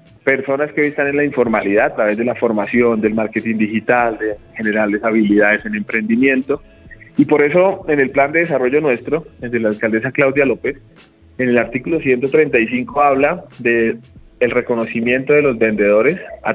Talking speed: 170 wpm